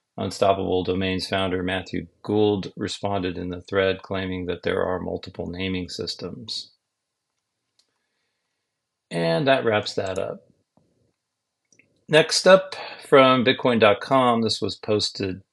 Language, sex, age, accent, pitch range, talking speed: English, male, 40-59, American, 95-120 Hz, 110 wpm